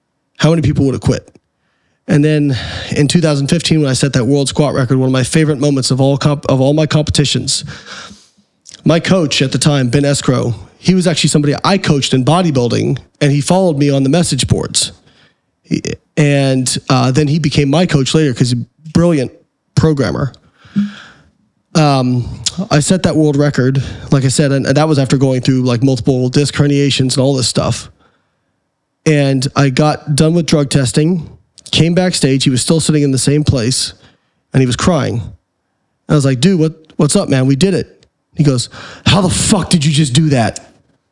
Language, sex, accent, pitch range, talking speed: English, male, American, 135-160 Hz, 195 wpm